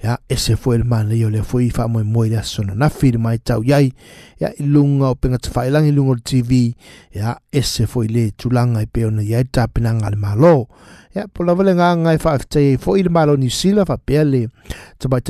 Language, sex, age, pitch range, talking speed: English, male, 60-79, 115-145 Hz, 195 wpm